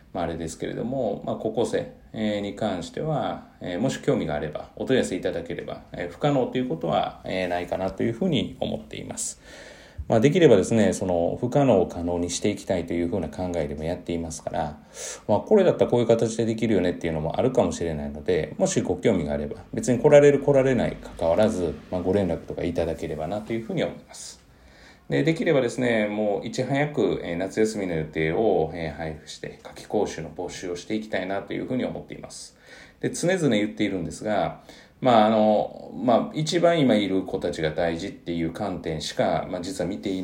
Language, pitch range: Japanese, 80-115 Hz